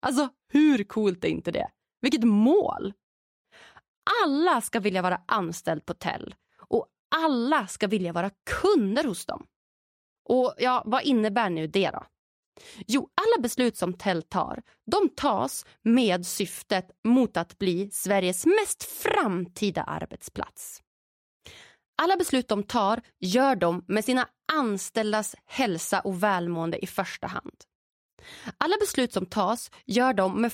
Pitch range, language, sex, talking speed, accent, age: 185-270 Hz, English, female, 135 wpm, Swedish, 30-49